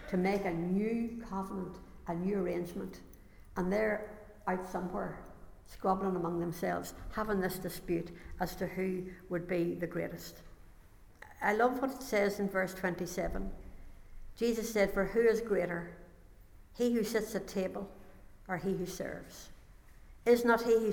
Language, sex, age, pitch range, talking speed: English, female, 60-79, 170-220 Hz, 150 wpm